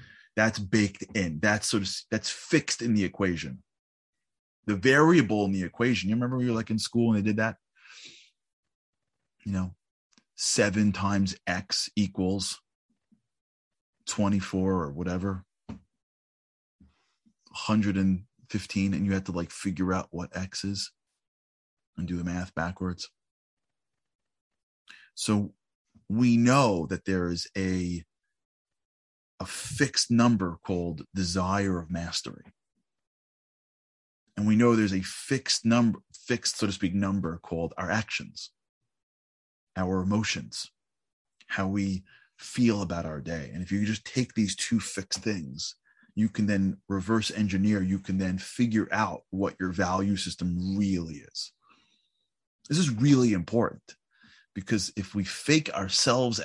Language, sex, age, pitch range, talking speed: English, male, 20-39, 90-110 Hz, 130 wpm